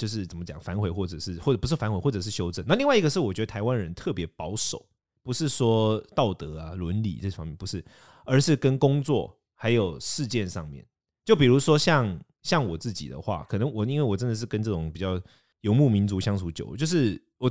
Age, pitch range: 20-39, 90-130 Hz